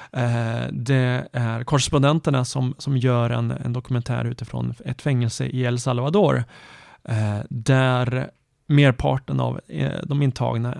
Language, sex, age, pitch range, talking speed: Swedish, male, 30-49, 120-150 Hz, 130 wpm